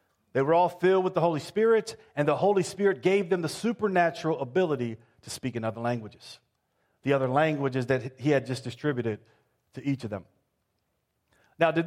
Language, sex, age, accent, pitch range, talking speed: English, male, 40-59, American, 135-175 Hz, 180 wpm